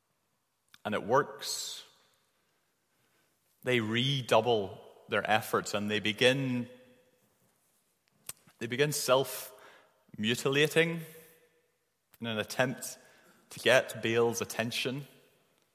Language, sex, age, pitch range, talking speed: English, male, 30-49, 120-150 Hz, 80 wpm